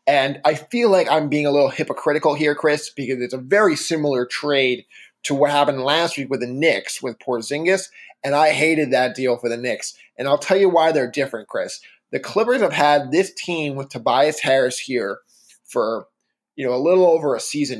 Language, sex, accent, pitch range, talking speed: English, male, American, 135-165 Hz, 205 wpm